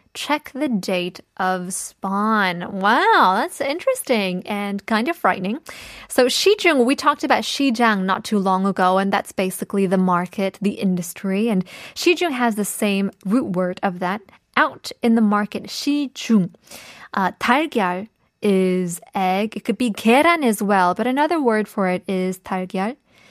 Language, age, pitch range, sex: Korean, 20-39, 195-255 Hz, female